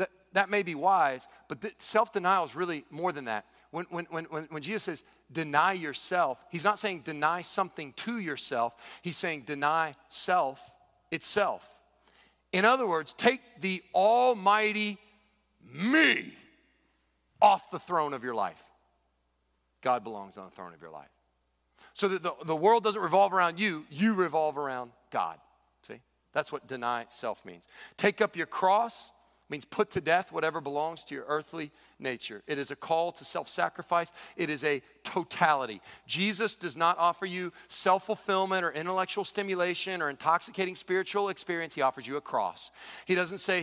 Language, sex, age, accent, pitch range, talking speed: English, male, 40-59, American, 145-185 Hz, 160 wpm